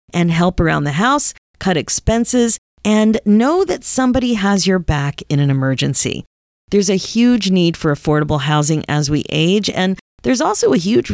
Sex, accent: female, American